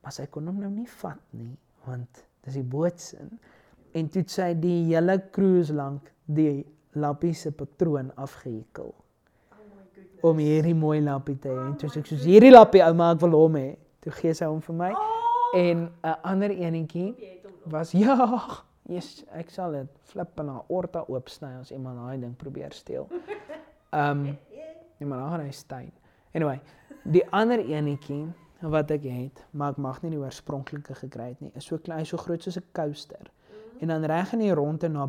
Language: English